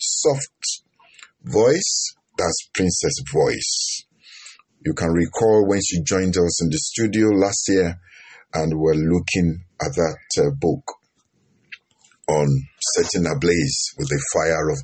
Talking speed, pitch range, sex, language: 125 wpm, 85-110 Hz, male, English